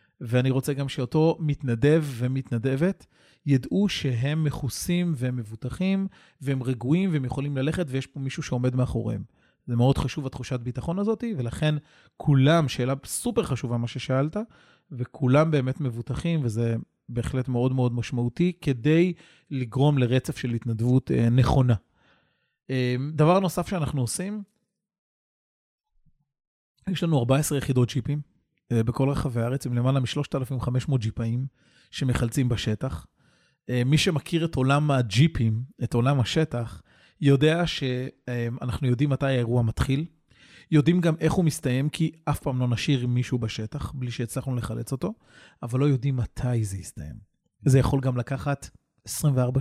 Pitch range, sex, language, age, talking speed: 125-150 Hz, male, Hebrew, 30-49, 130 wpm